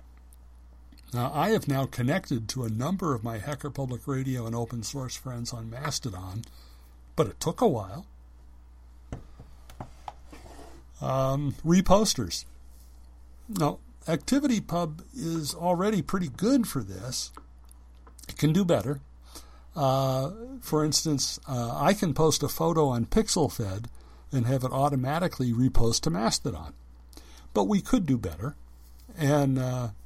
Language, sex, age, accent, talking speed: English, male, 60-79, American, 125 wpm